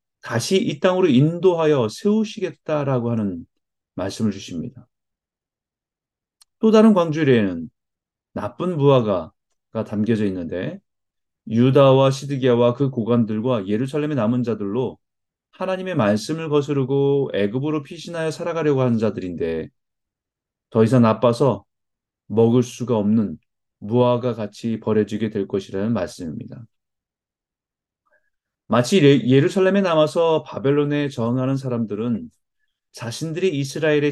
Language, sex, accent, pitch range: Korean, male, native, 115-165 Hz